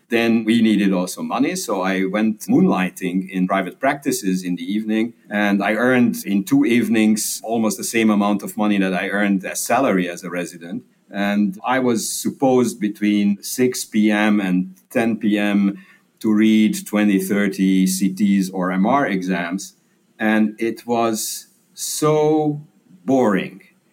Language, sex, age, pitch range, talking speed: English, male, 50-69, 95-125 Hz, 145 wpm